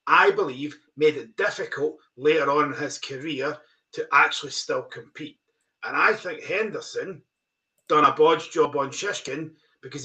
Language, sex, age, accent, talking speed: English, male, 40-59, British, 150 wpm